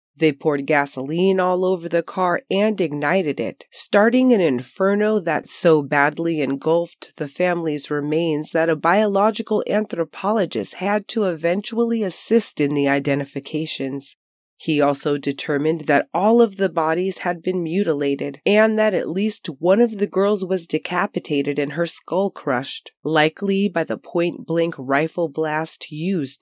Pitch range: 145-185 Hz